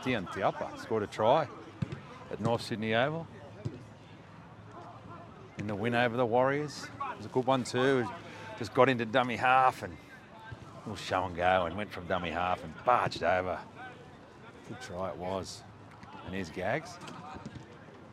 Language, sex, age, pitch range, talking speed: English, male, 40-59, 100-115 Hz, 150 wpm